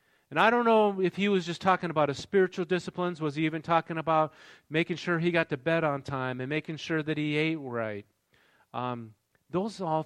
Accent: American